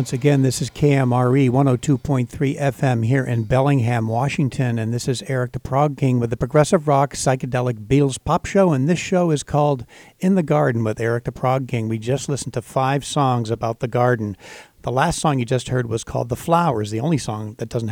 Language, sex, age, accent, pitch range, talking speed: English, male, 50-69, American, 125-160 Hz, 210 wpm